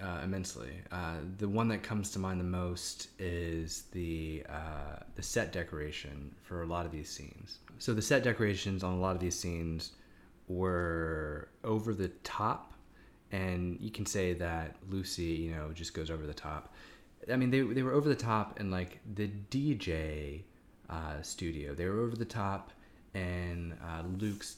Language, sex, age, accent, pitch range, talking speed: English, male, 20-39, American, 85-110 Hz, 175 wpm